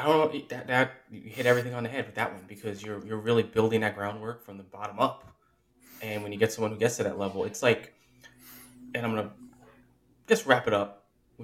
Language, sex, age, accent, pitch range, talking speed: English, male, 20-39, American, 105-125 Hz, 235 wpm